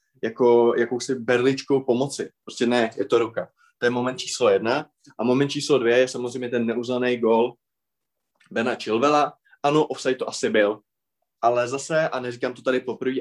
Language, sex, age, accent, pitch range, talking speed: Czech, male, 20-39, native, 125-145 Hz, 170 wpm